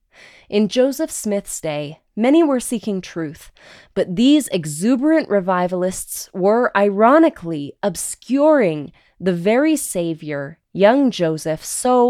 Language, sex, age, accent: English, female, 20-39, American